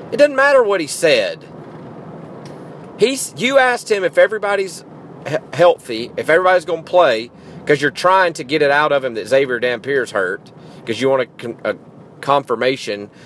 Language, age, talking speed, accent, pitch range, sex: English, 40-59, 165 wpm, American, 140-185 Hz, male